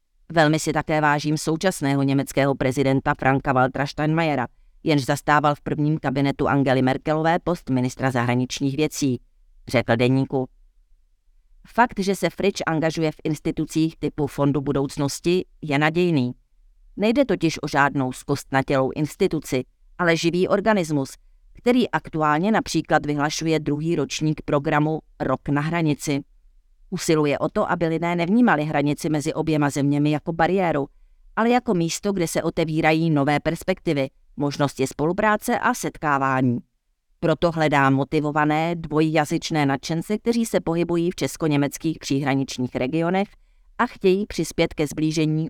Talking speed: 125 wpm